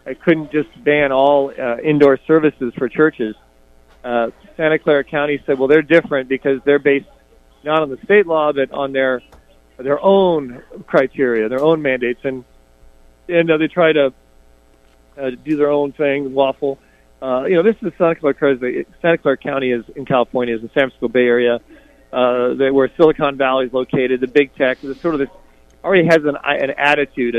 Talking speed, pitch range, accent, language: 185 wpm, 125-145 Hz, American, English